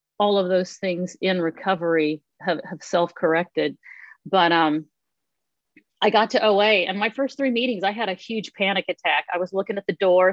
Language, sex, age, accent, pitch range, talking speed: English, female, 40-59, American, 175-205 Hz, 185 wpm